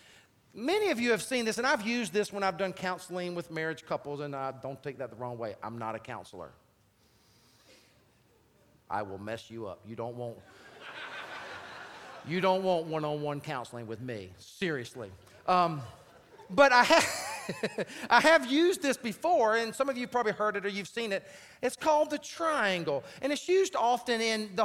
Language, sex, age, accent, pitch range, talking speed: English, male, 40-59, American, 180-260 Hz, 185 wpm